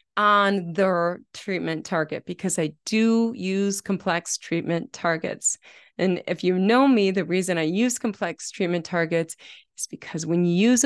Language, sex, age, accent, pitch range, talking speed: English, female, 30-49, American, 160-195 Hz, 155 wpm